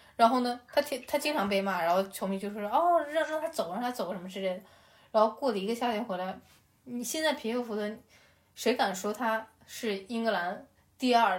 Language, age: Chinese, 10-29